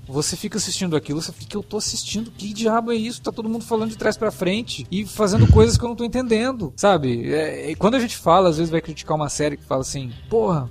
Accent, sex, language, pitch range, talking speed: Brazilian, male, Portuguese, 130-205 Hz, 245 wpm